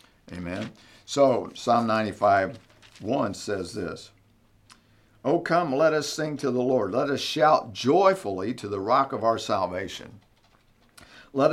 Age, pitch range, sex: 50-69, 95-125 Hz, male